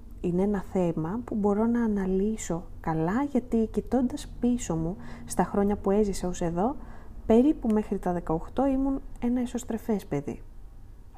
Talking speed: 140 wpm